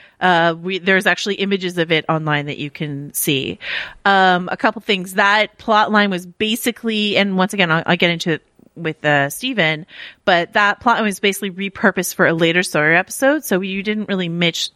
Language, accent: English, American